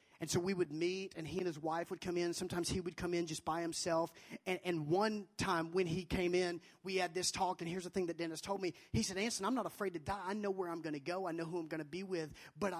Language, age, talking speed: English, 30-49, 305 wpm